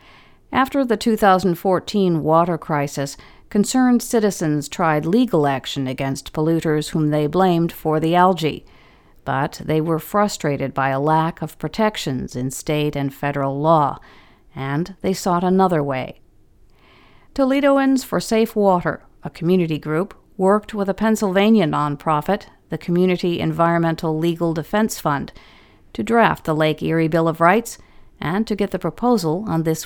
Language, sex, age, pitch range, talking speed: English, female, 50-69, 155-200 Hz, 140 wpm